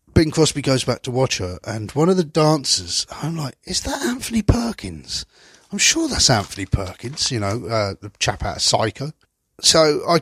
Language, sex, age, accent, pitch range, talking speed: English, male, 40-59, British, 110-155 Hz, 195 wpm